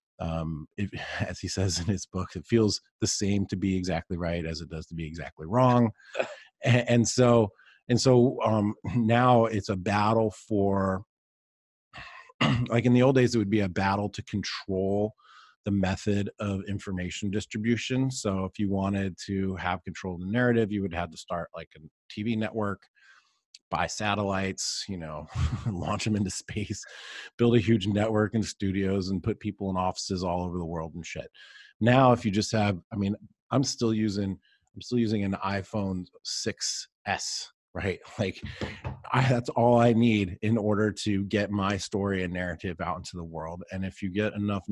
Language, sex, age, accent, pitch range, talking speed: English, male, 30-49, American, 95-110 Hz, 180 wpm